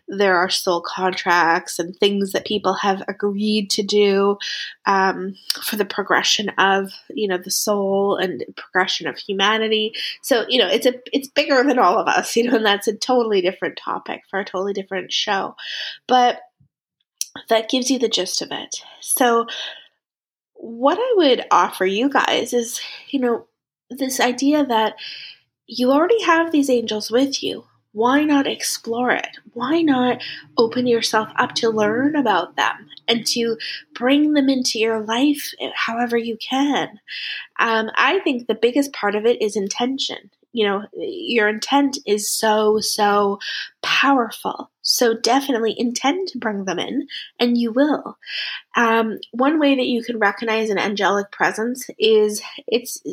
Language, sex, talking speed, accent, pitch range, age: English, female, 155 wpm, American, 205-260 Hz, 20-39